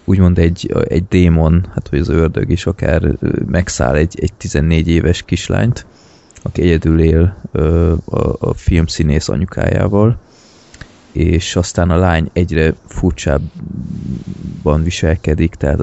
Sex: male